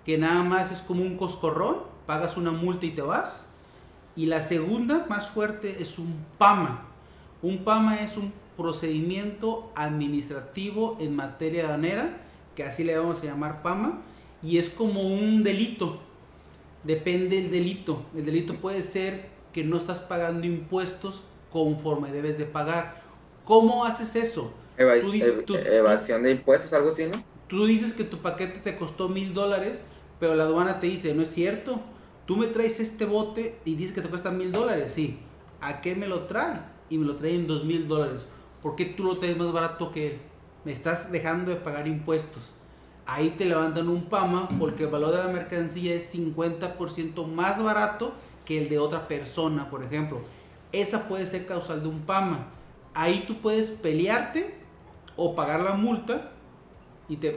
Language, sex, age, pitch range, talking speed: Spanish, male, 30-49, 155-195 Hz, 170 wpm